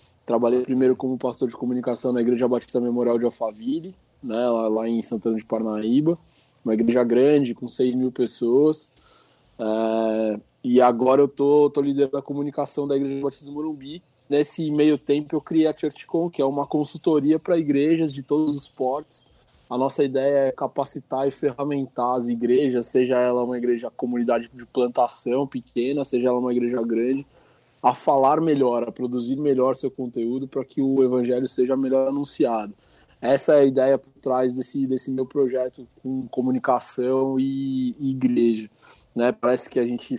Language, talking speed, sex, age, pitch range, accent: Portuguese, 165 wpm, male, 20-39, 120-135 Hz, Brazilian